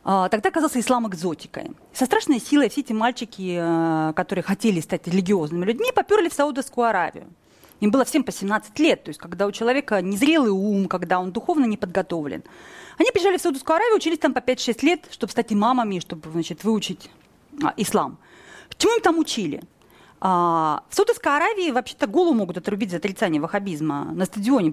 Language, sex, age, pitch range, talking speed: Russian, female, 30-49, 205-335 Hz, 170 wpm